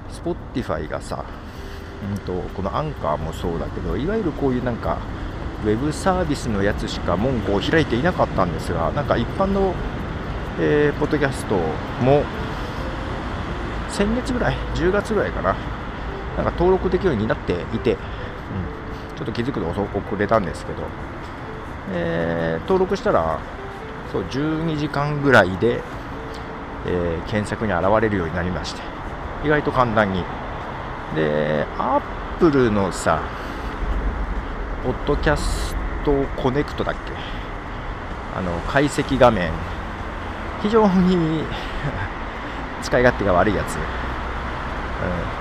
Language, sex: Japanese, male